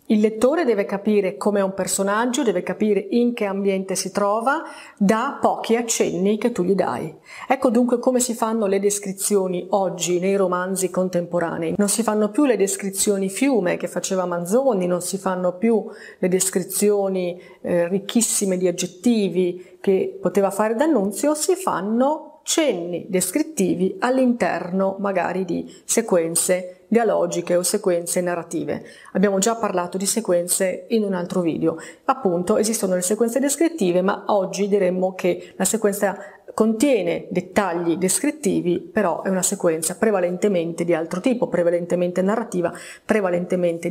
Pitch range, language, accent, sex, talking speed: 180-225 Hz, Italian, native, female, 140 wpm